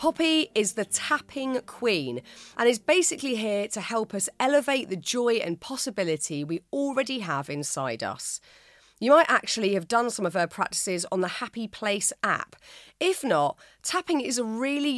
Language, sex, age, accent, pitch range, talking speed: English, female, 30-49, British, 175-255 Hz, 170 wpm